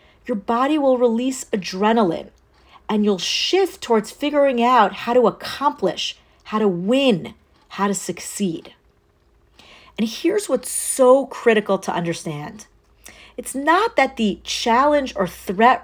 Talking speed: 130 wpm